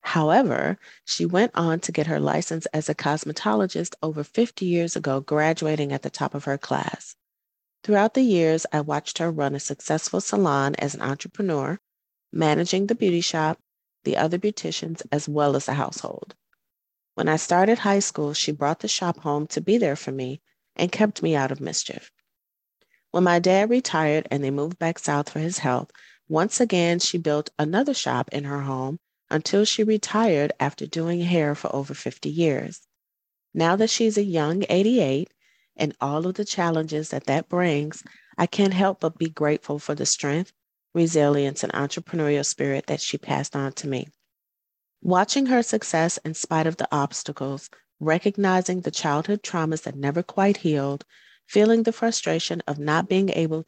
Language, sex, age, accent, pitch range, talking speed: English, female, 30-49, American, 145-190 Hz, 175 wpm